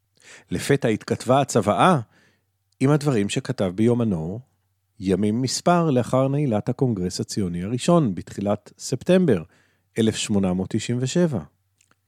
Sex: male